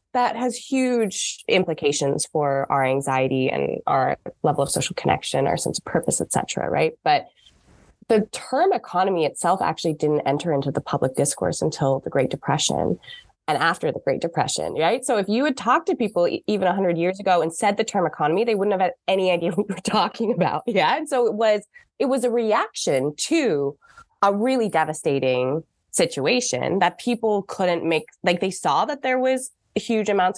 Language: English